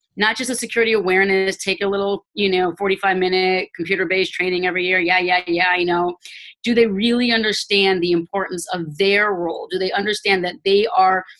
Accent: American